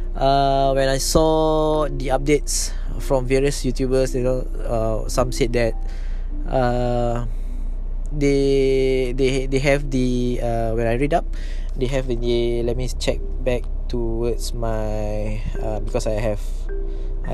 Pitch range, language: 110-135 Hz, English